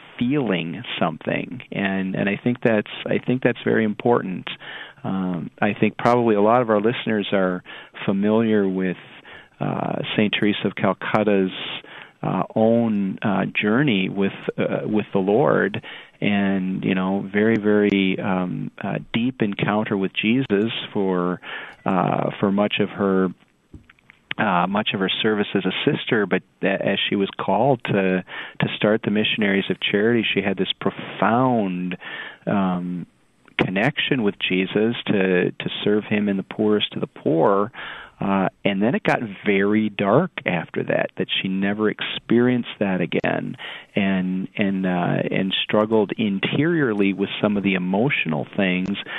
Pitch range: 95-110 Hz